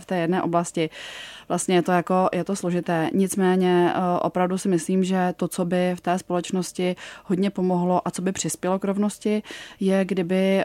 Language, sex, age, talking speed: Czech, female, 20-39, 180 wpm